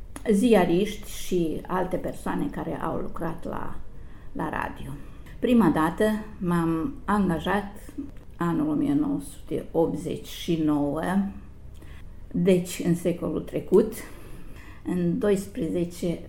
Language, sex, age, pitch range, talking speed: Romanian, female, 50-69, 160-200 Hz, 80 wpm